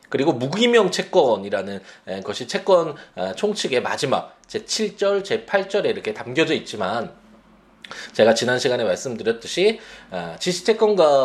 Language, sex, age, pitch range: Korean, male, 20-39, 130-215 Hz